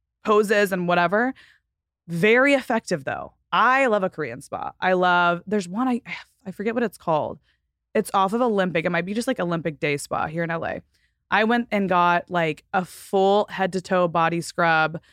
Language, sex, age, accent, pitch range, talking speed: English, female, 20-39, American, 170-205 Hz, 190 wpm